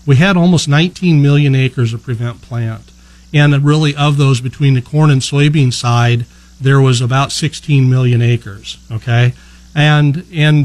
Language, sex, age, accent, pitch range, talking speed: English, male, 40-59, American, 125-145 Hz, 160 wpm